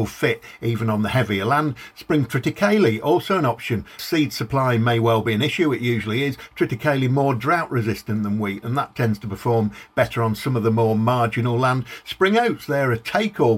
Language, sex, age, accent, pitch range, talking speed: English, male, 50-69, British, 115-145 Hz, 200 wpm